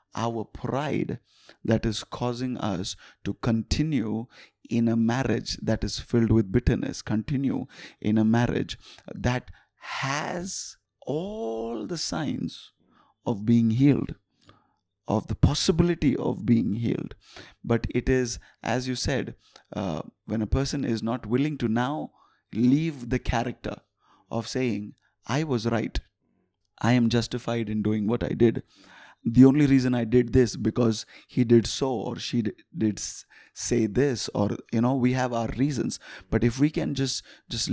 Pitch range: 110-130 Hz